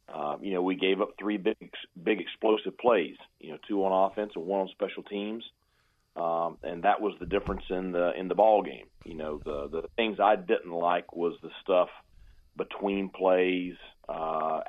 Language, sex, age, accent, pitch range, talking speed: English, male, 40-59, American, 85-100 Hz, 195 wpm